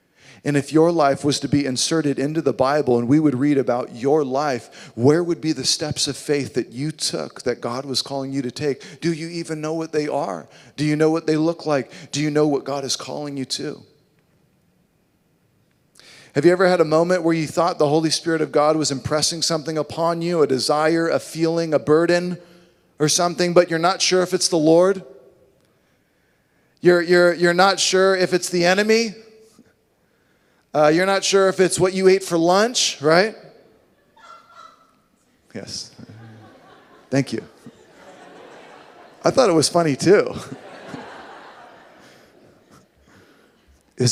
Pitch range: 140-175 Hz